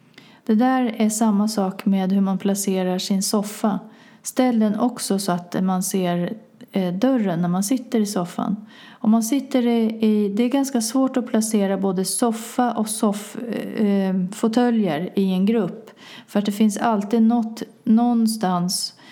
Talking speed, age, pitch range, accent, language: 155 wpm, 40-59, 195-235 Hz, native, Swedish